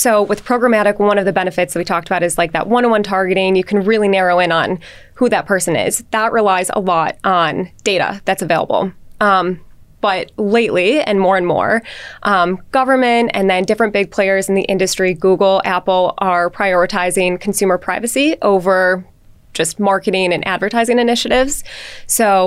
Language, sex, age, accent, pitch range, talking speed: English, female, 20-39, American, 185-215 Hz, 175 wpm